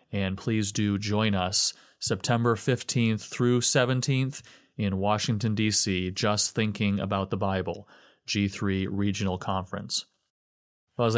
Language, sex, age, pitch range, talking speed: English, male, 30-49, 100-115 Hz, 115 wpm